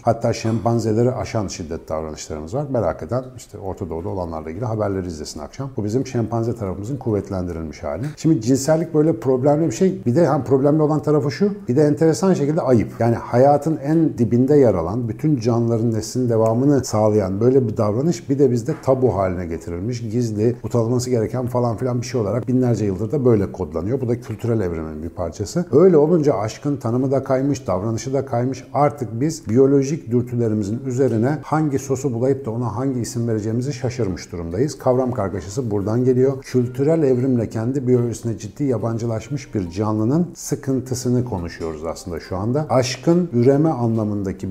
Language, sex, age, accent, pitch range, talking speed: Turkish, male, 50-69, native, 105-135 Hz, 165 wpm